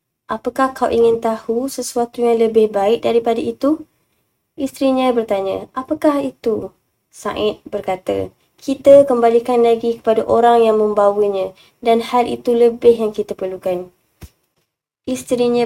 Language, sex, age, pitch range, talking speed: Malay, female, 20-39, 210-235 Hz, 120 wpm